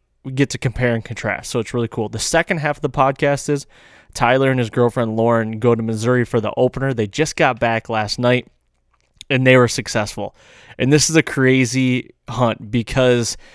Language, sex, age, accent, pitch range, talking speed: English, male, 20-39, American, 110-130 Hz, 200 wpm